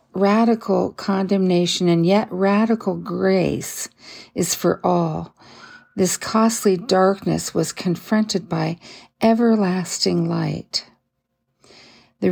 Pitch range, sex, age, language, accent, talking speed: 175-205 Hz, female, 50-69, English, American, 90 wpm